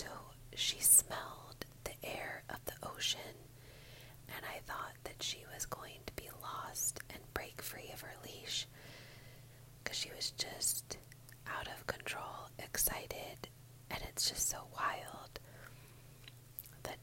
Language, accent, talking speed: English, American, 135 wpm